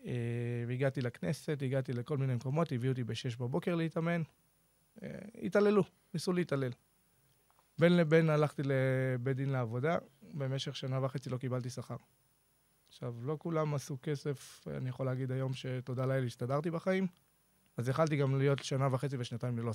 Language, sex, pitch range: Hebrew, male, 125-160 Hz